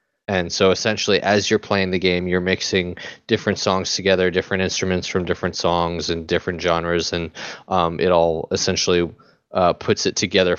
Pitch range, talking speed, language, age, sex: 85-100 Hz, 170 wpm, English, 20-39, male